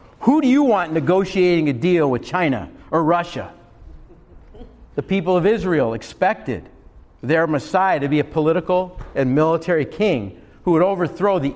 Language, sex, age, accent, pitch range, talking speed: English, male, 50-69, American, 125-185 Hz, 150 wpm